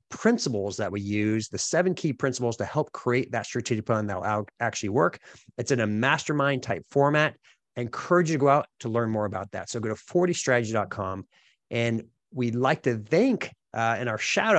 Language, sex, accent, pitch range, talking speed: English, male, American, 105-140 Hz, 200 wpm